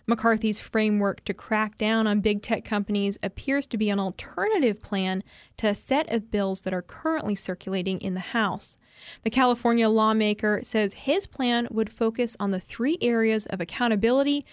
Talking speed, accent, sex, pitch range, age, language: 170 wpm, American, female, 205-235 Hz, 20-39, English